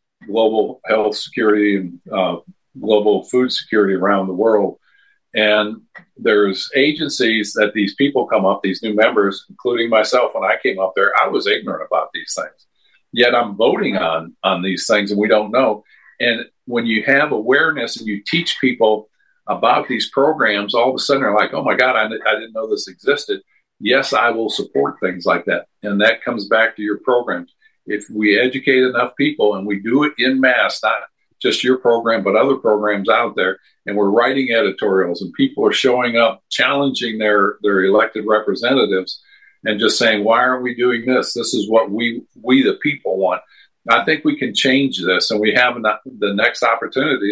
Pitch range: 105-130 Hz